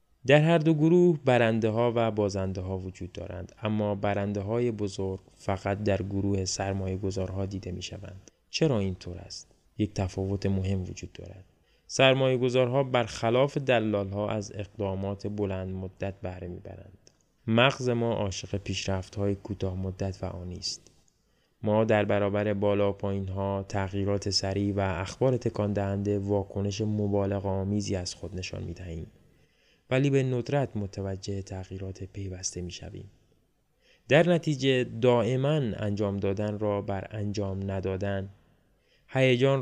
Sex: male